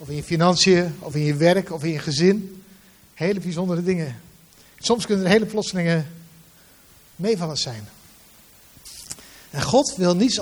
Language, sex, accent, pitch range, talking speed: Dutch, male, Dutch, 150-190 Hz, 160 wpm